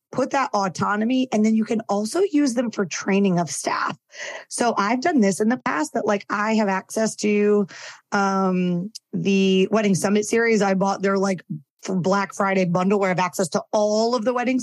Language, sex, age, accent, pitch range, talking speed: English, female, 30-49, American, 195-235 Hz, 195 wpm